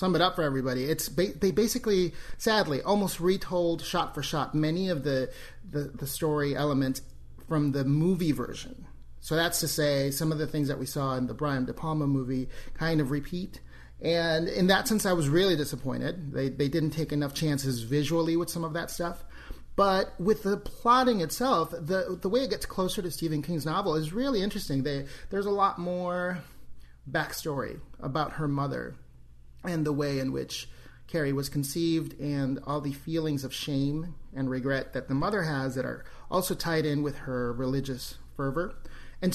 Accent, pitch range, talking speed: American, 135-175 Hz, 185 wpm